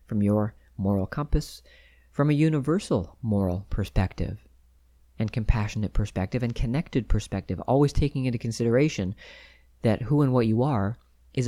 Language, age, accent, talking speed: English, 40-59, American, 135 wpm